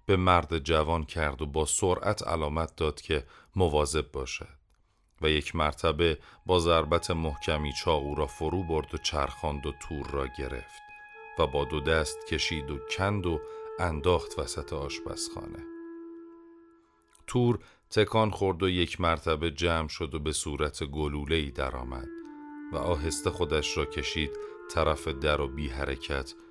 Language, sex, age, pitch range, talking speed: Persian, male, 40-59, 75-110 Hz, 140 wpm